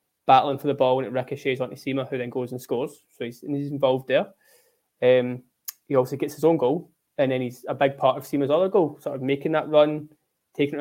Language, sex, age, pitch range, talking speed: English, male, 20-39, 130-150 Hz, 235 wpm